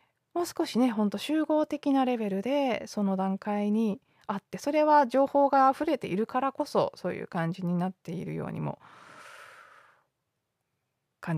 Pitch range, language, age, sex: 180-240 Hz, Japanese, 20-39, female